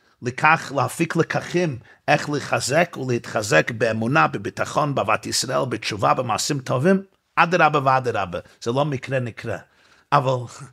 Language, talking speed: Hebrew, 110 wpm